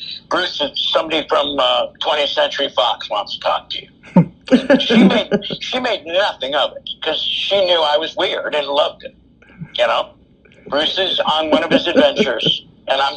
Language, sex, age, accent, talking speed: English, male, 50-69, American, 180 wpm